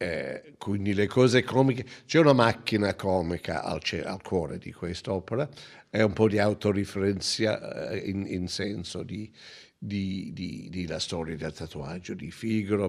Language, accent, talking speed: Italian, native, 135 wpm